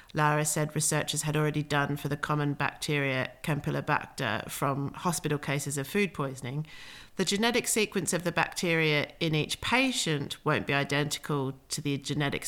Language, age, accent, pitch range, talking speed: English, 40-59, British, 145-180 Hz, 155 wpm